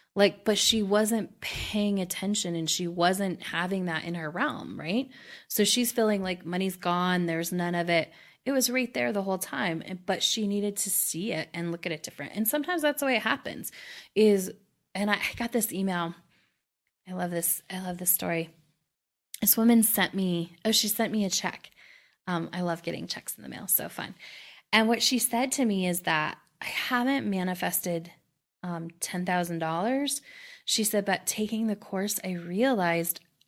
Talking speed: 185 wpm